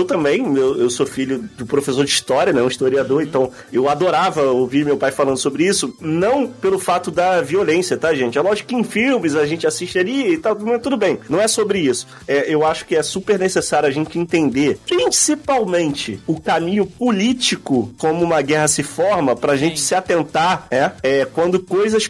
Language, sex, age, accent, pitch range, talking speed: Portuguese, male, 30-49, Brazilian, 145-200 Hz, 200 wpm